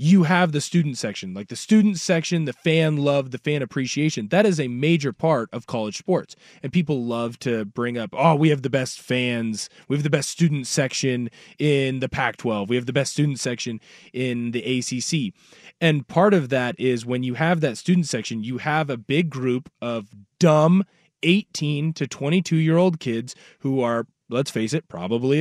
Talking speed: 190 wpm